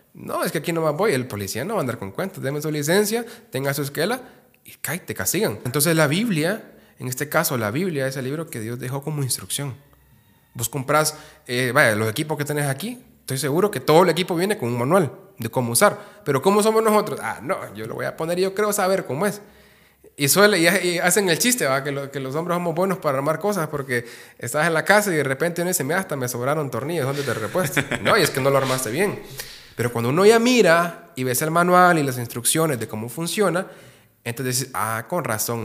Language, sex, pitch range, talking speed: Spanish, male, 120-170 Hz, 240 wpm